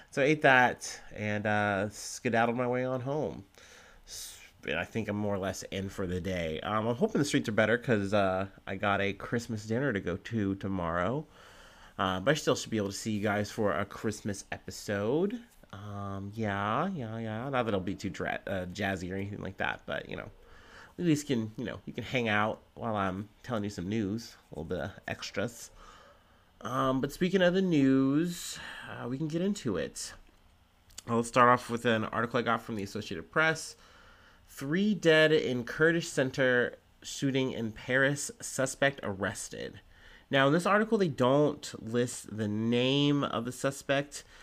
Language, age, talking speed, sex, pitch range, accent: English, 30-49, 190 wpm, male, 100-140 Hz, American